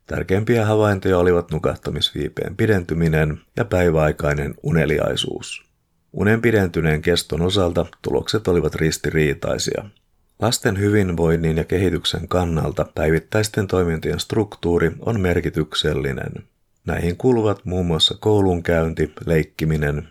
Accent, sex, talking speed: native, male, 95 wpm